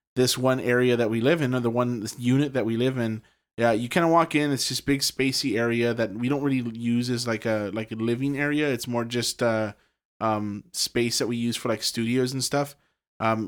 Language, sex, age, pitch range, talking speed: English, male, 20-39, 115-130 Hz, 245 wpm